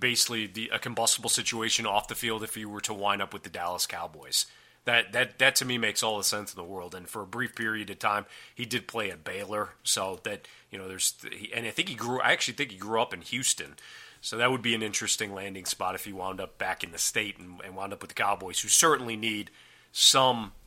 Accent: American